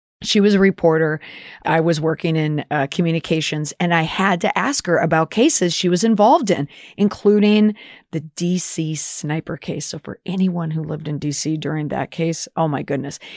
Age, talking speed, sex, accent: 40-59, 180 wpm, female, American